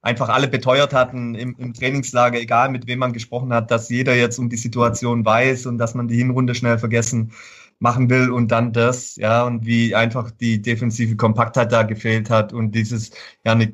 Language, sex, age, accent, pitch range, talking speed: German, male, 30-49, German, 115-140 Hz, 195 wpm